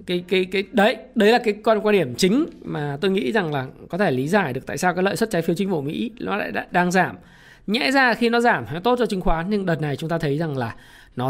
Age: 20-39